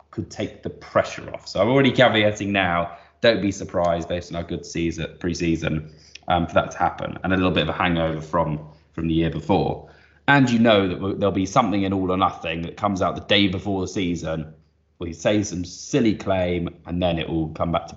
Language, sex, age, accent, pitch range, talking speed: English, male, 20-39, British, 85-110 Hz, 225 wpm